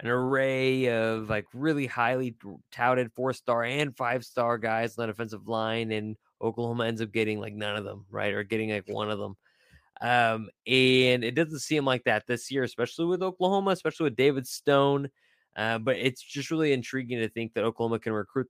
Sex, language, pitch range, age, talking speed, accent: male, English, 115-140 Hz, 20-39, 200 wpm, American